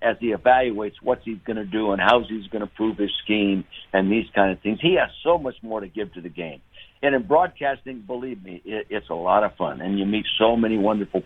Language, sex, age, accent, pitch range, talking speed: English, male, 60-79, American, 105-130 Hz, 250 wpm